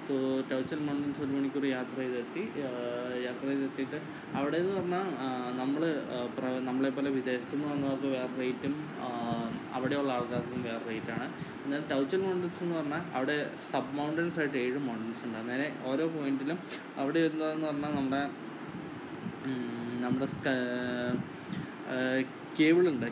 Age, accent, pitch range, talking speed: 20-39, native, 130-150 Hz, 120 wpm